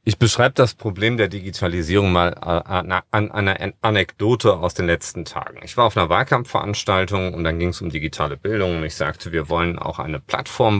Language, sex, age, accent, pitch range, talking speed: German, male, 40-59, German, 85-105 Hz, 190 wpm